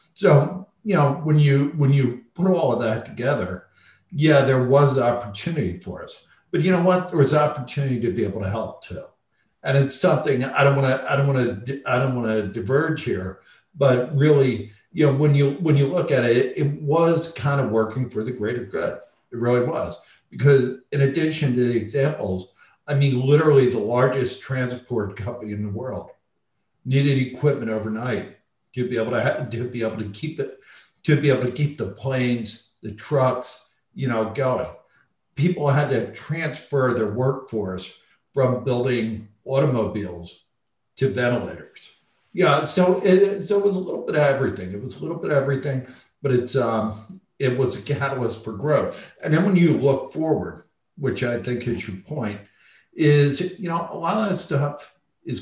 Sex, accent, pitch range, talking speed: male, American, 120-150 Hz, 185 wpm